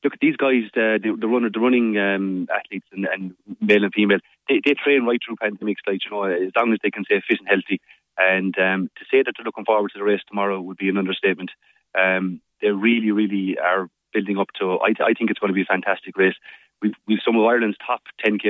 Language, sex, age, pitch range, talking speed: English, male, 30-49, 95-110 Hz, 245 wpm